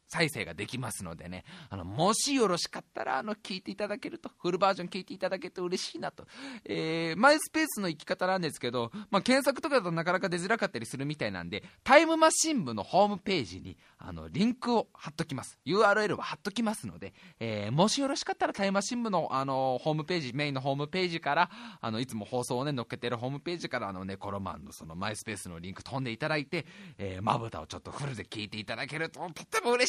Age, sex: 20-39, male